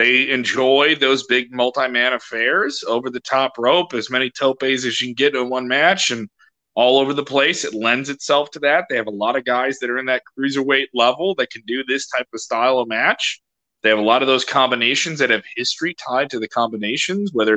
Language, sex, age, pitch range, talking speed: English, male, 30-49, 115-135 Hz, 225 wpm